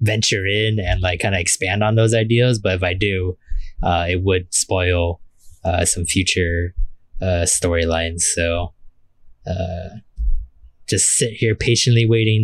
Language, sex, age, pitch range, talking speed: English, male, 20-39, 90-120 Hz, 145 wpm